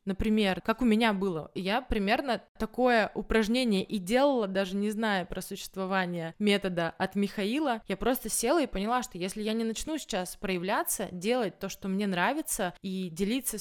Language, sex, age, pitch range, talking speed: Russian, female, 20-39, 185-230 Hz, 170 wpm